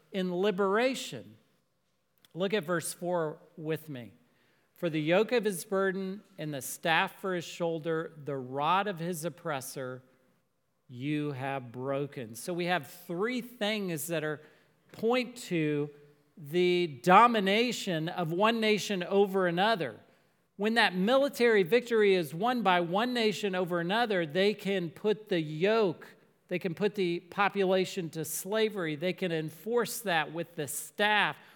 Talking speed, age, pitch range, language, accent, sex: 140 wpm, 40-59, 155-205 Hz, English, American, male